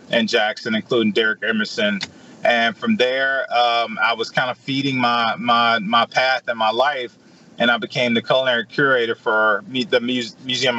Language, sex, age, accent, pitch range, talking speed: English, male, 30-49, American, 115-140 Hz, 160 wpm